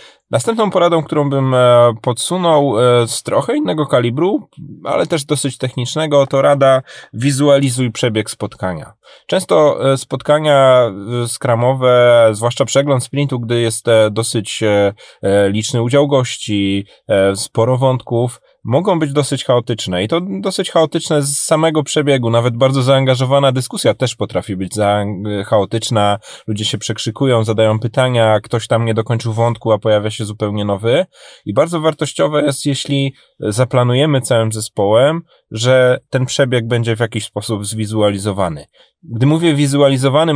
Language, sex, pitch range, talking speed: Polish, male, 110-135 Hz, 125 wpm